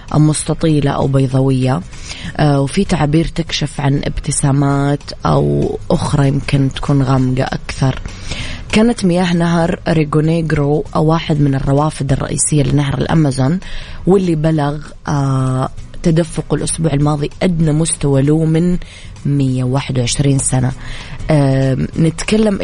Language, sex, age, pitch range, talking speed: English, female, 20-39, 135-160 Hz, 100 wpm